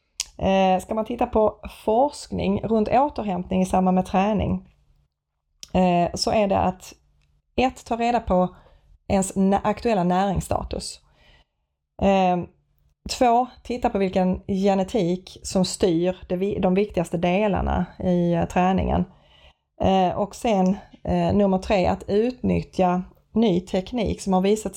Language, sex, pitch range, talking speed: Swedish, female, 180-210 Hz, 110 wpm